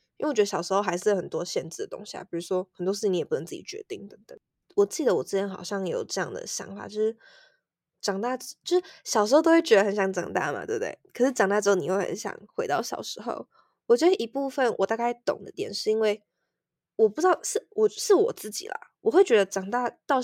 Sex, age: female, 20-39